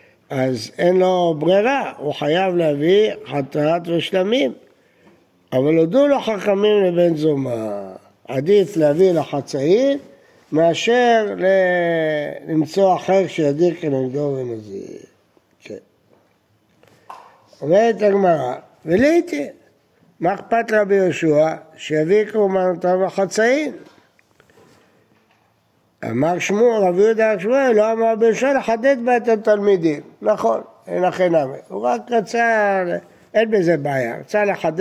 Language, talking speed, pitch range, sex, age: Hebrew, 105 wpm, 160-210 Hz, male, 60-79